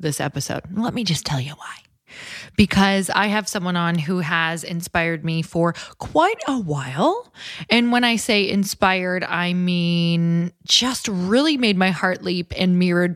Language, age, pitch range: English, 20-39, 165-210 Hz